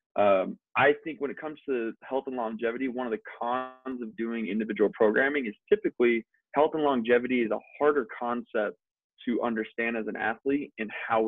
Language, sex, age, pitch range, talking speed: English, male, 20-39, 110-130 Hz, 180 wpm